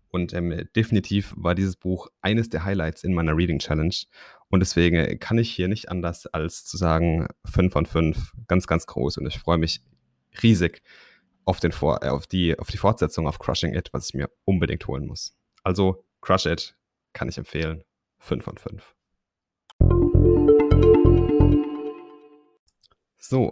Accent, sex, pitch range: German, male, 85-105 Hz